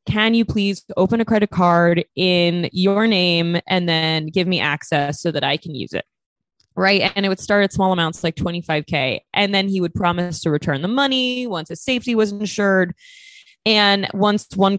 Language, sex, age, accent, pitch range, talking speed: English, female, 20-39, American, 155-195 Hz, 195 wpm